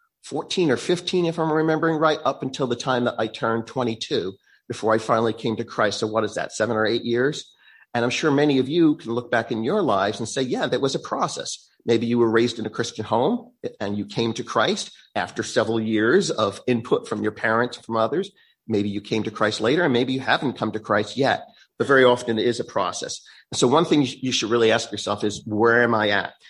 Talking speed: 240 wpm